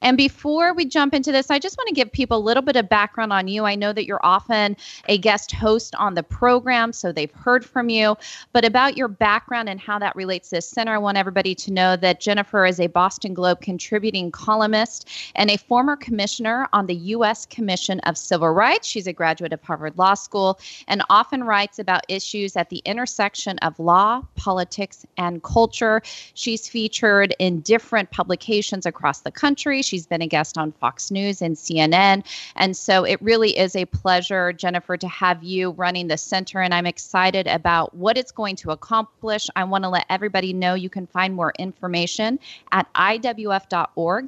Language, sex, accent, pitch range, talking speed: English, female, American, 180-230 Hz, 190 wpm